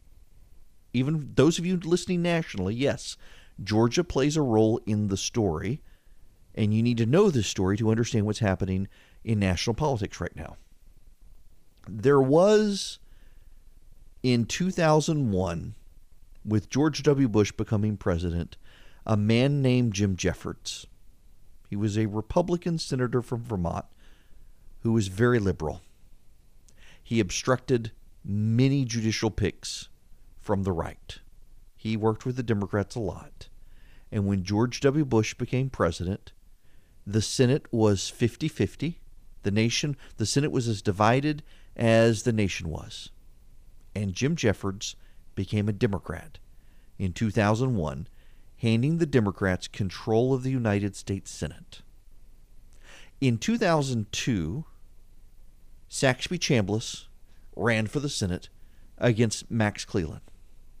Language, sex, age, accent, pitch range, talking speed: English, male, 40-59, American, 95-125 Hz, 120 wpm